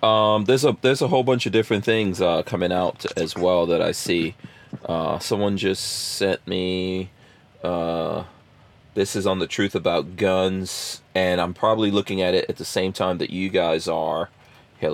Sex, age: male, 30-49